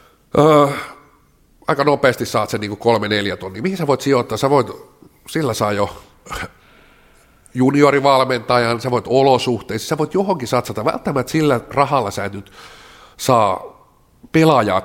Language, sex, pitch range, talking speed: Finnish, male, 100-130 Hz, 125 wpm